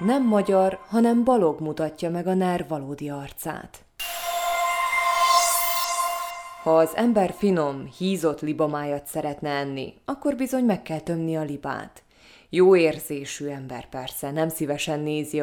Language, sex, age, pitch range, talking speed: Hungarian, female, 20-39, 145-210 Hz, 125 wpm